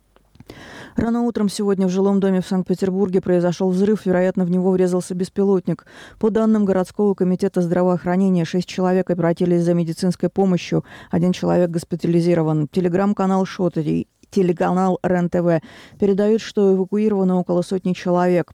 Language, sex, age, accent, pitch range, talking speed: Russian, female, 20-39, native, 170-190 Hz, 130 wpm